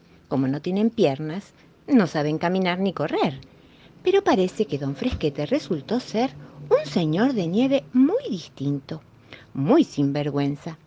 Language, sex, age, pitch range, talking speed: Spanish, female, 50-69, 155-230 Hz, 135 wpm